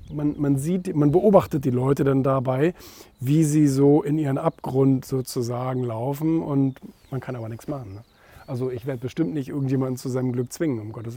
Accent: German